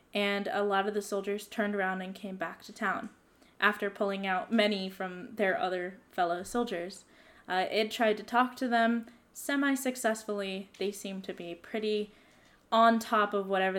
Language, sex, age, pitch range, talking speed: English, female, 10-29, 190-225 Hz, 170 wpm